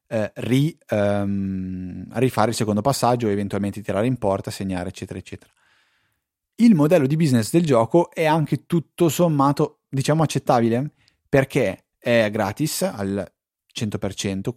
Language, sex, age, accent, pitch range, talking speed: Italian, male, 30-49, native, 100-130 Hz, 115 wpm